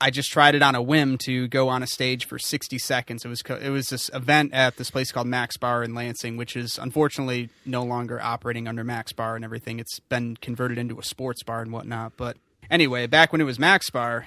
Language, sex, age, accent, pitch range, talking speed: English, male, 30-49, American, 115-135 Hz, 245 wpm